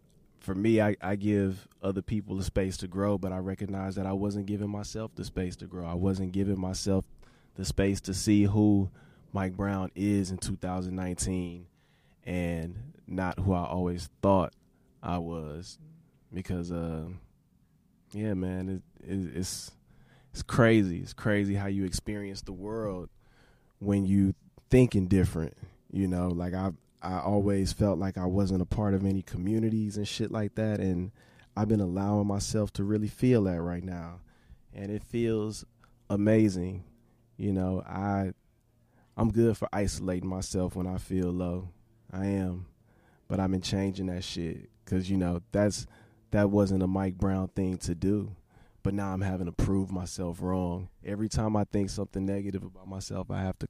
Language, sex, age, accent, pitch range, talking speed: English, male, 20-39, American, 95-105 Hz, 165 wpm